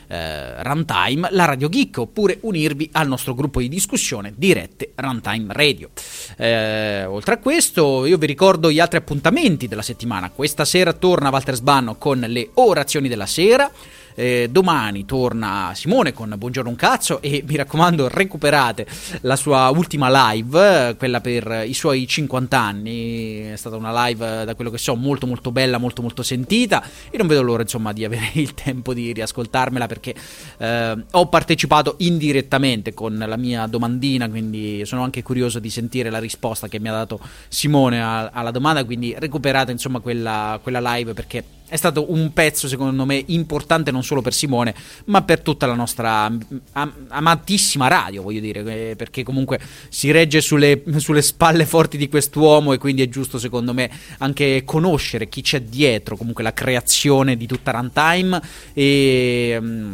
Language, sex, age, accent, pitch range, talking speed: Italian, male, 30-49, native, 115-150 Hz, 160 wpm